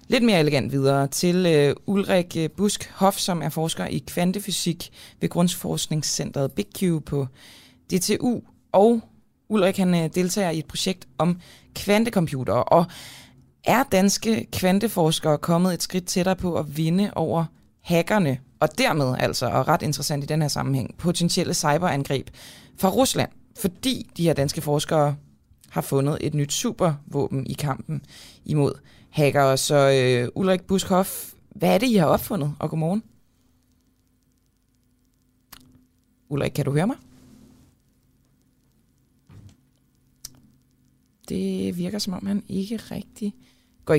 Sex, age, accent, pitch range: female, 20-39, native, 140-185 Hz